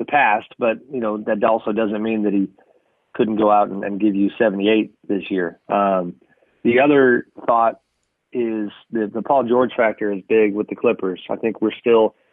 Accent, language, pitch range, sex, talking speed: American, English, 100-115 Hz, male, 195 wpm